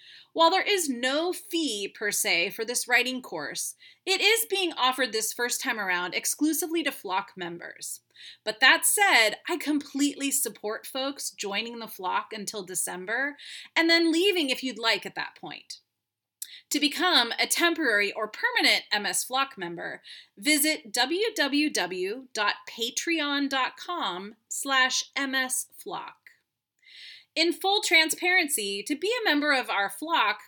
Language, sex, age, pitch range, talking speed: English, female, 30-49, 220-330 Hz, 130 wpm